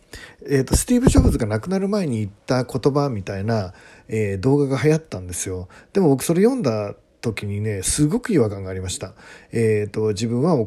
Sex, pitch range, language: male, 100-150 Hz, Japanese